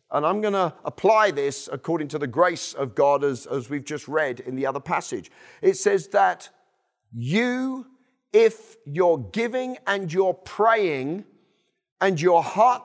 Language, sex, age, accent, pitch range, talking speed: English, male, 40-59, British, 155-220 Hz, 160 wpm